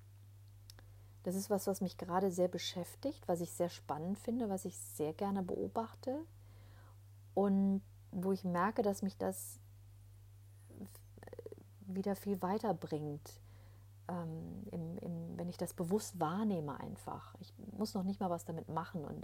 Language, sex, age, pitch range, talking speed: German, female, 40-59, 100-170 Hz, 145 wpm